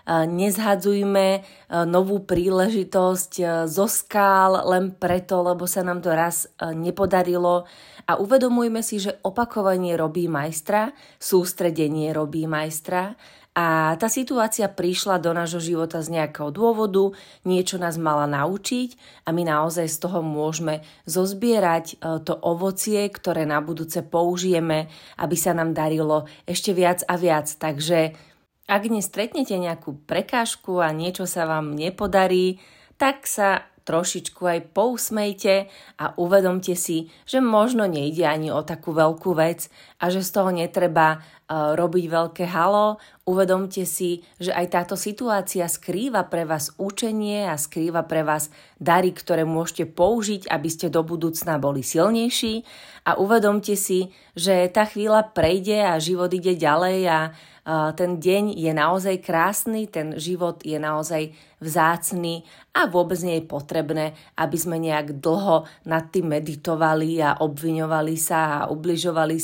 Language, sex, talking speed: Slovak, female, 135 wpm